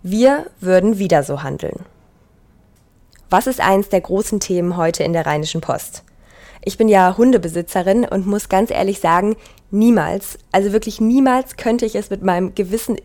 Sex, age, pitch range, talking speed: female, 20-39, 180-220 Hz, 160 wpm